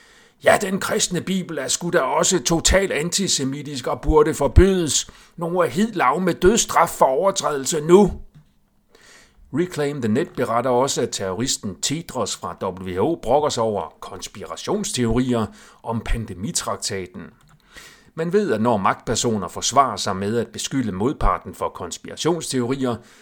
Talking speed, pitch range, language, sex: 130 wpm, 105-160 Hz, Danish, male